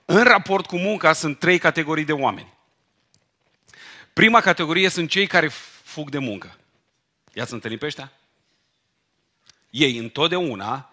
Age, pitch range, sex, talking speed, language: 40-59, 140-185 Hz, male, 125 wpm, Romanian